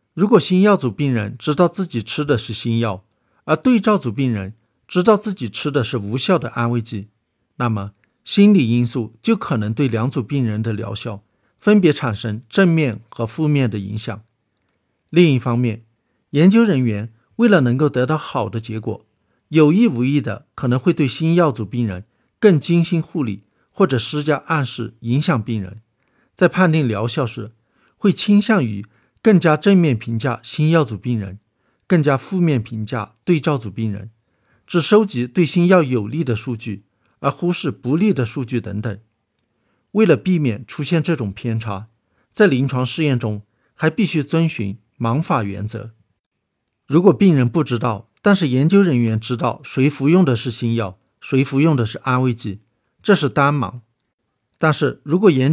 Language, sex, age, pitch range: Chinese, male, 60-79, 115-160 Hz